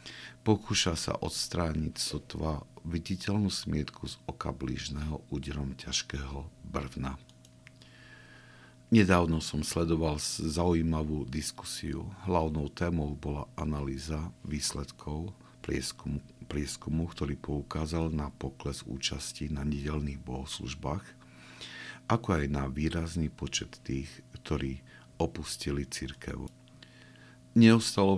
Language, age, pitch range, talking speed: Slovak, 50-69, 70-85 Hz, 85 wpm